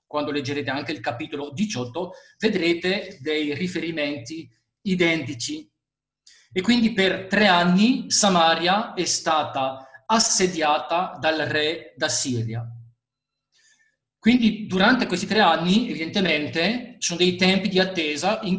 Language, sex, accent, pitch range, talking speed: Italian, male, native, 145-185 Hz, 115 wpm